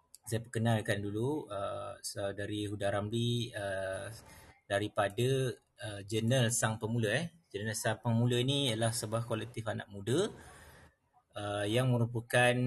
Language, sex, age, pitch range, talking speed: Malay, male, 30-49, 105-120 Hz, 125 wpm